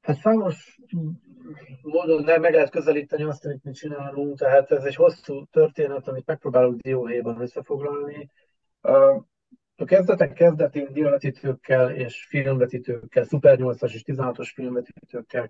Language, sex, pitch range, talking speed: Hungarian, male, 125-160 Hz, 120 wpm